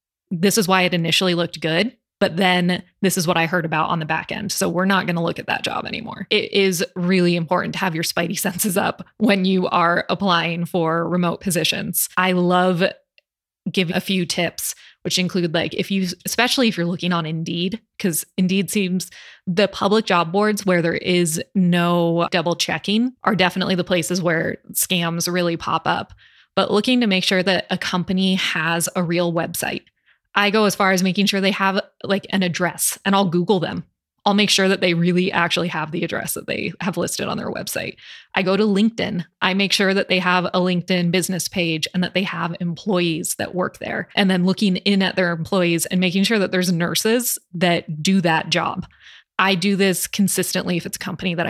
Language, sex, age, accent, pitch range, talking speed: English, female, 20-39, American, 175-195 Hz, 205 wpm